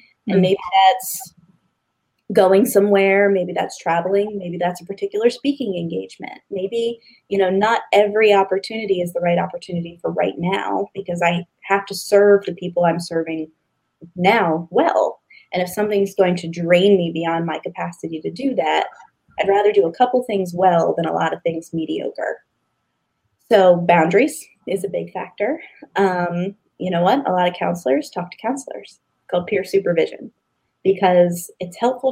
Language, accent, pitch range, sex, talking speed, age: English, American, 175-210 Hz, female, 165 wpm, 20-39